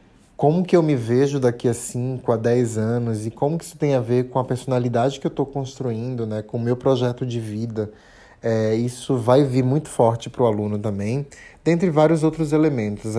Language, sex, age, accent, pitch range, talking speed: Portuguese, male, 20-39, Brazilian, 120-145 Hz, 205 wpm